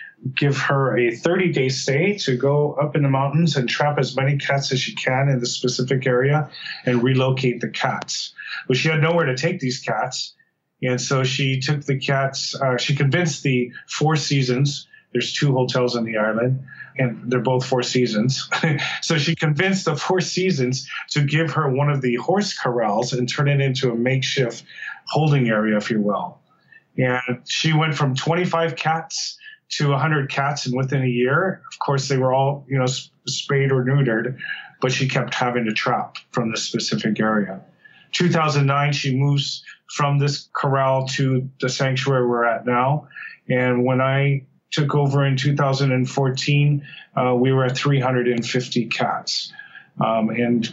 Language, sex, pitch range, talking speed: English, male, 125-145 Hz, 170 wpm